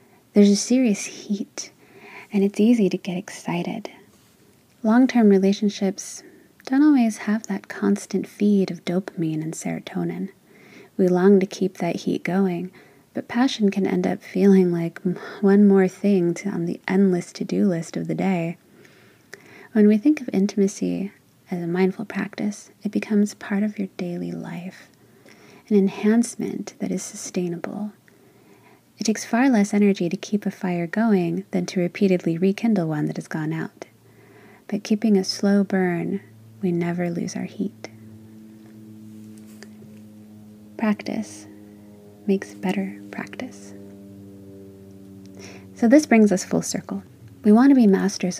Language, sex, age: English, female, 30-49